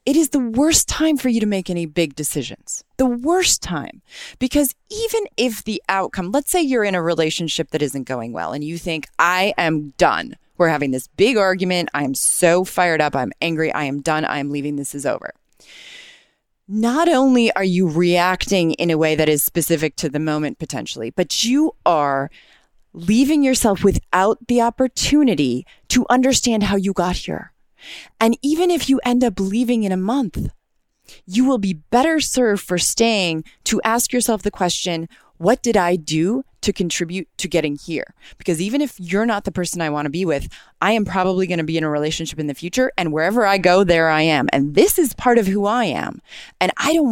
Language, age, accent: English, 30-49, American